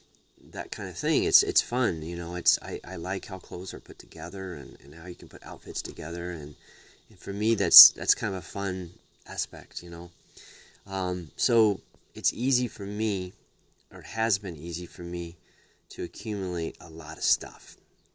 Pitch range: 90-110 Hz